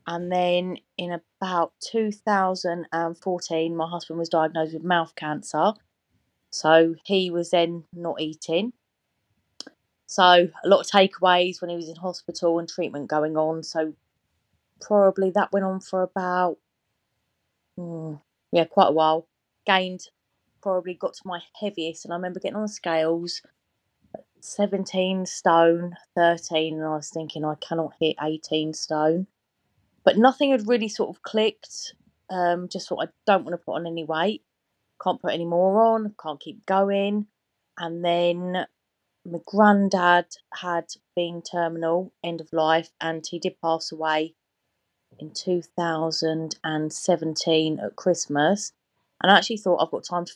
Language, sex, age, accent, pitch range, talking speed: English, female, 20-39, British, 160-190 Hz, 145 wpm